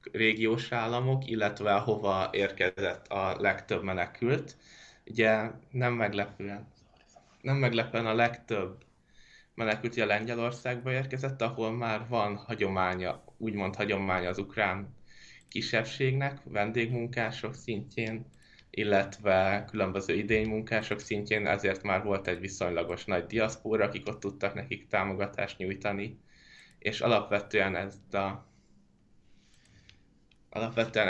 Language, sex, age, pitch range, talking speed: Hungarian, male, 20-39, 100-115 Hz, 100 wpm